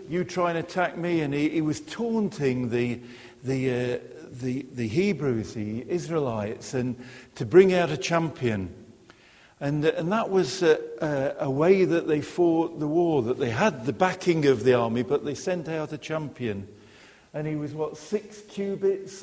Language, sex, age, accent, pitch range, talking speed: English, male, 50-69, British, 125-185 Hz, 180 wpm